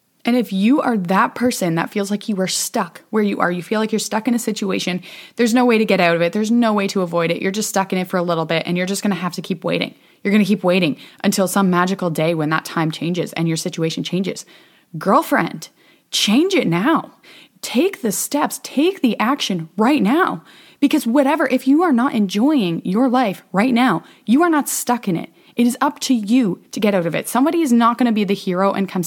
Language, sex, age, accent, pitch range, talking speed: English, female, 20-39, American, 185-245 Hz, 250 wpm